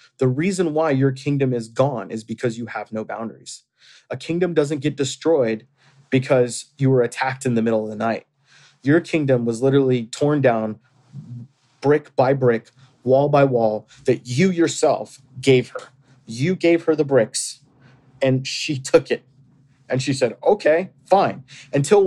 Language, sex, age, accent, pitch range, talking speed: English, male, 30-49, American, 125-145 Hz, 165 wpm